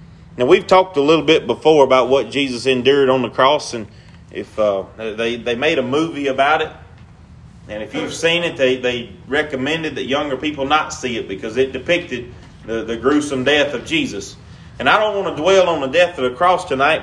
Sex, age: male, 30-49